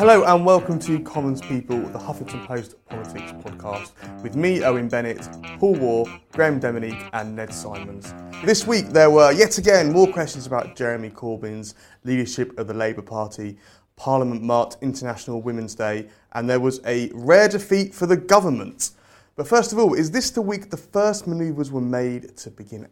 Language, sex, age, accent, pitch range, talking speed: English, male, 30-49, British, 110-145 Hz, 175 wpm